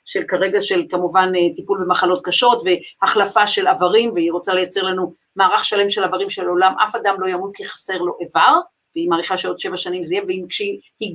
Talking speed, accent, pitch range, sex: 205 wpm, native, 190-275 Hz, female